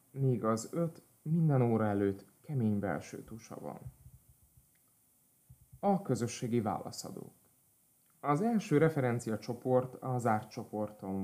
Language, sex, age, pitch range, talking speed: Hungarian, male, 30-49, 110-135 Hz, 105 wpm